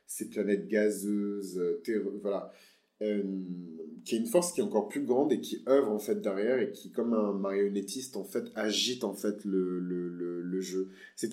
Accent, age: French, 30-49